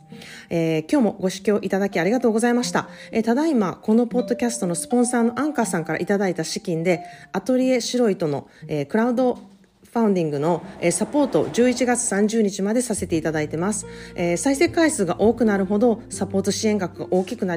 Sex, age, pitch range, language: female, 40-59, 165-225 Hz, Japanese